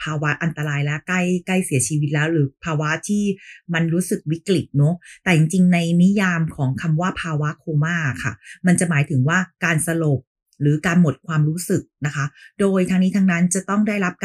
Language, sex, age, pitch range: Thai, female, 30-49, 150-190 Hz